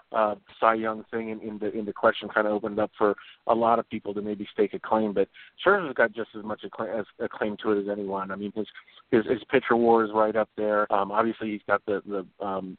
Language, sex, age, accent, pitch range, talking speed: English, male, 40-59, American, 100-110 Hz, 265 wpm